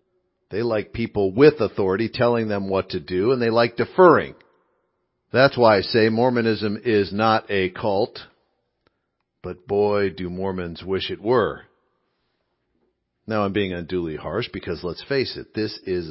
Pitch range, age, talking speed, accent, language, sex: 90-115 Hz, 50-69, 155 wpm, American, English, male